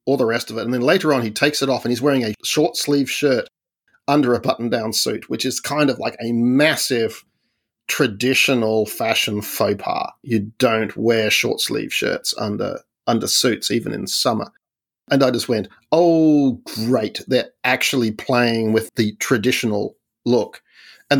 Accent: Australian